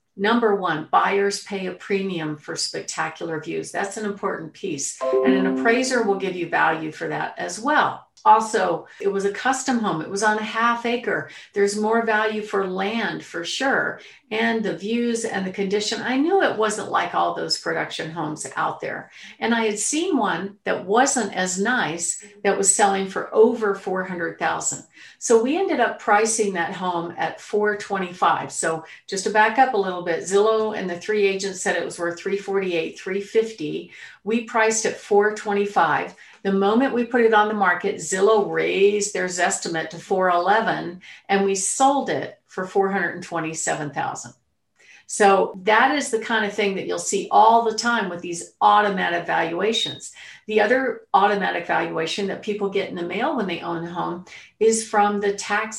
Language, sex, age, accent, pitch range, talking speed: English, female, 50-69, American, 185-225 Hz, 185 wpm